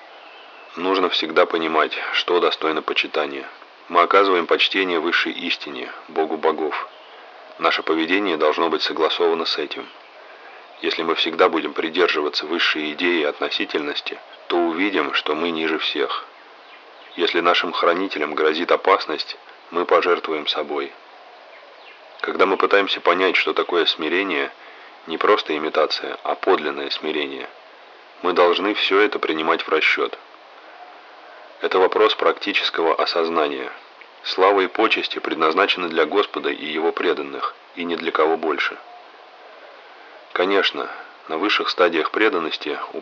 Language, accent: Russian, native